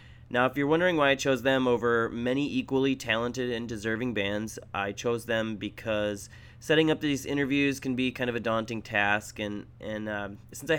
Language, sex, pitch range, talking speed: English, male, 105-125 Hz, 195 wpm